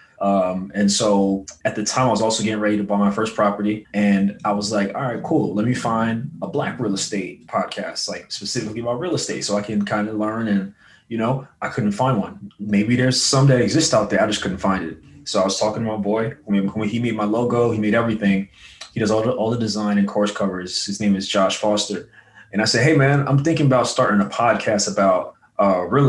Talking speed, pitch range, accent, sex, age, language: 245 wpm, 100-120 Hz, American, male, 20-39, English